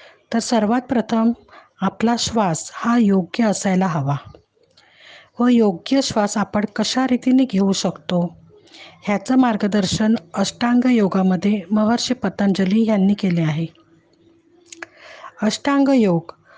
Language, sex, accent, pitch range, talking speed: Marathi, female, native, 200-250 Hz, 95 wpm